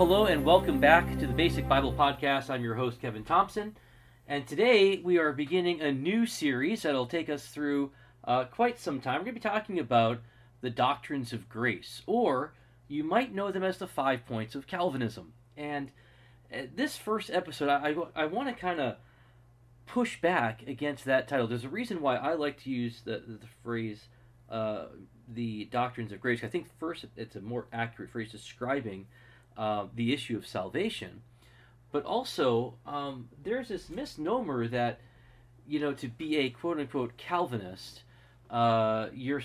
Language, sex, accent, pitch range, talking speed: English, male, American, 120-145 Hz, 170 wpm